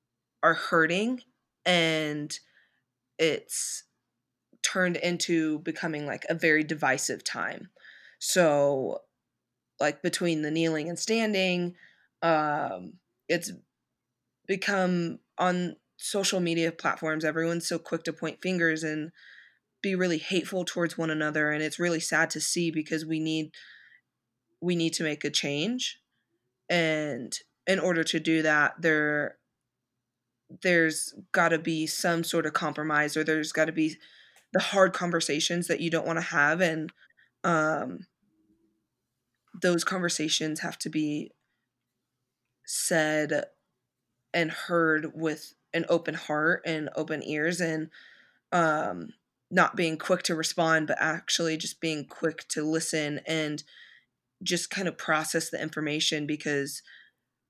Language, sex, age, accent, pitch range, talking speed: English, female, 20-39, American, 150-170 Hz, 125 wpm